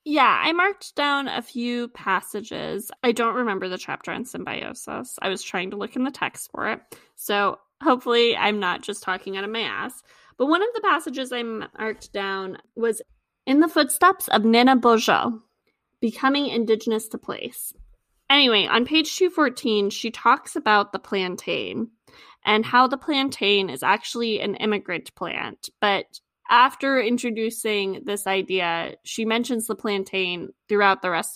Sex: female